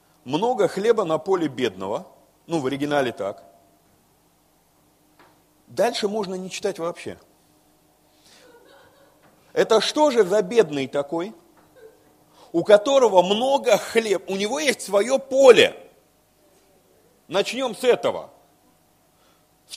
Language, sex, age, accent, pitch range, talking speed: Russian, male, 40-59, native, 150-230 Hz, 100 wpm